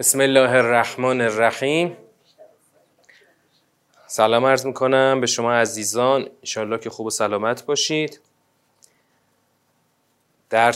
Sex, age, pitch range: male, 30-49, 110-130 Hz